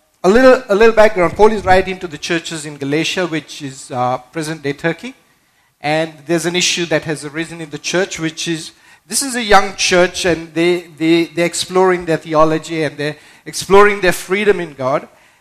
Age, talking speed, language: 50-69, 190 wpm, English